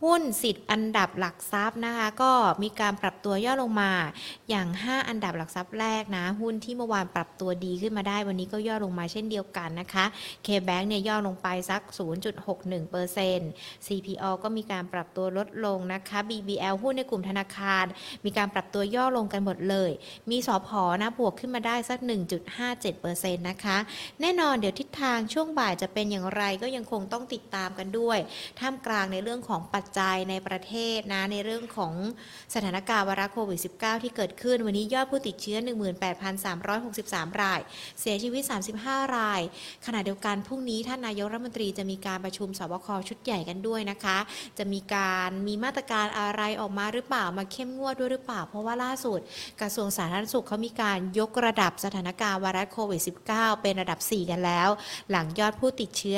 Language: Thai